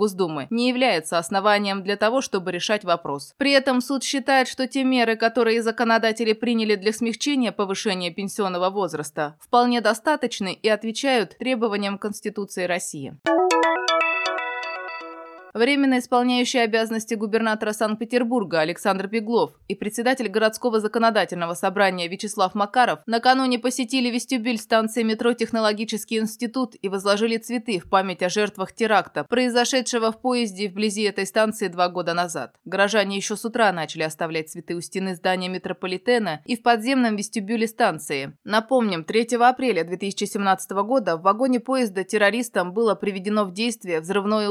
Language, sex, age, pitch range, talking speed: Russian, female, 20-39, 185-235 Hz, 130 wpm